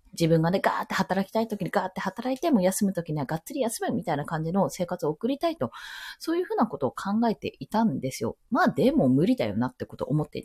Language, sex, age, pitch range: Japanese, female, 20-39, 160-255 Hz